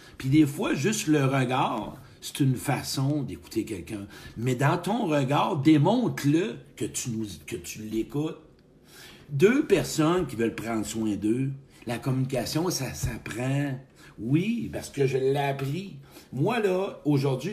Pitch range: 135-205 Hz